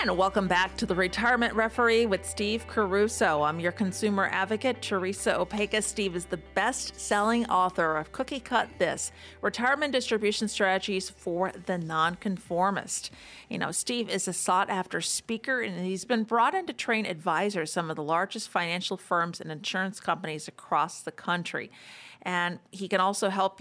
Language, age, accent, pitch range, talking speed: English, 40-59, American, 175-215 Hz, 160 wpm